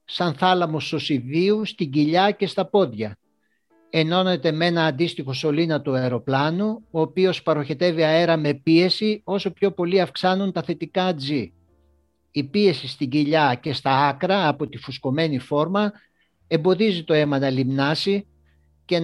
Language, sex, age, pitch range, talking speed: English, male, 60-79, 135-175 Hz, 140 wpm